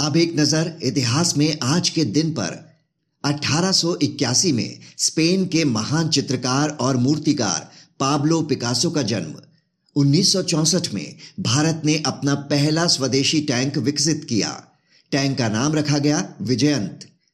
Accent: native